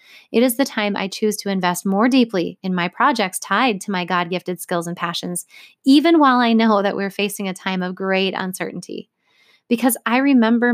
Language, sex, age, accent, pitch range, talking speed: English, female, 20-39, American, 195-240 Hz, 195 wpm